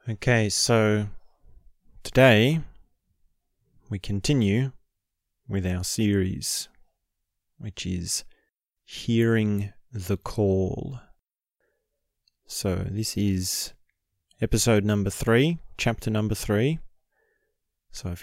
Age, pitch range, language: 30-49, 95-110 Hz, English